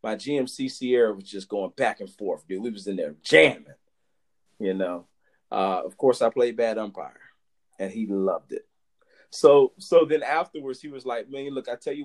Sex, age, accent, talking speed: male, 30-49, American, 195 wpm